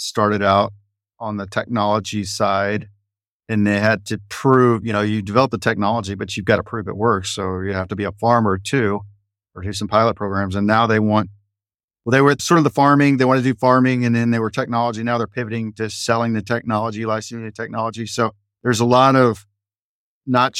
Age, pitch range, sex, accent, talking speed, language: 40-59, 100-115 Hz, male, American, 215 wpm, English